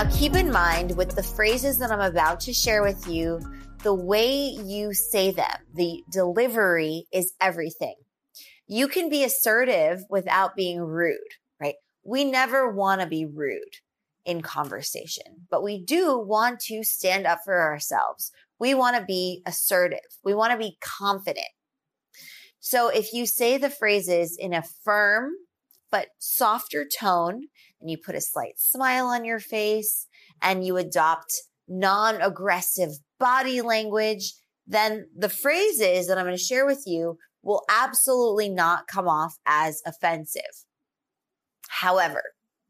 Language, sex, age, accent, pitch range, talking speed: English, female, 20-39, American, 180-235 Hz, 145 wpm